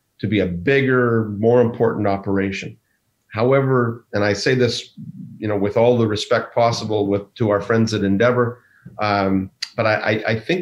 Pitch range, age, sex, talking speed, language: 100-120 Hz, 40-59, male, 170 wpm, English